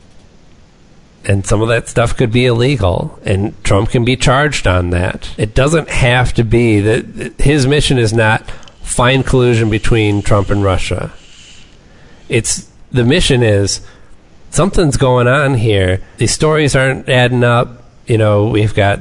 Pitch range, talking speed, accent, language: 100-125 Hz, 150 wpm, American, English